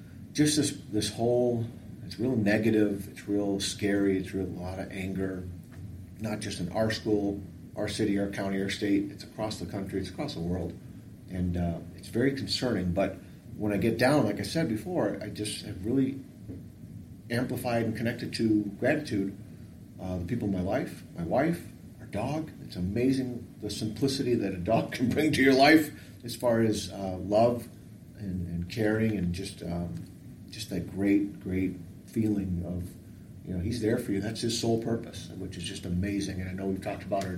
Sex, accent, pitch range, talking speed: male, American, 95-120 Hz, 190 wpm